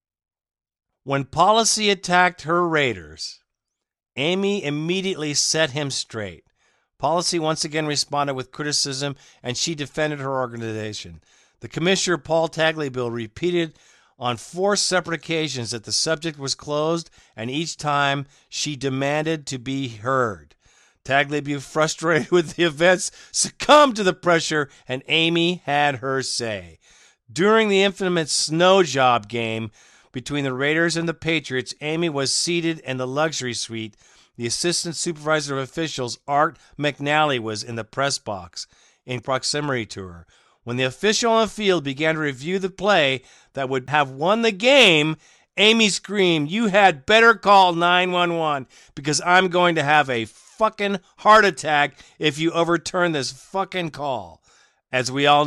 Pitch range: 130-175 Hz